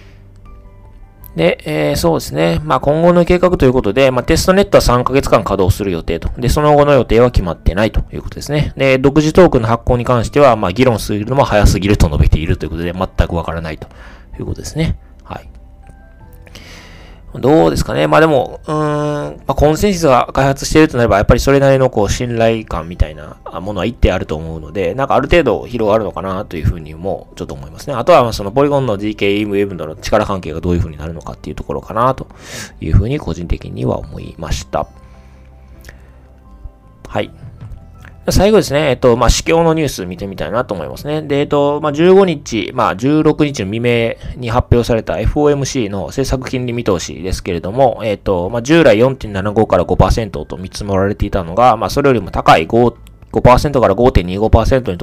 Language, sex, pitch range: Japanese, male, 85-130 Hz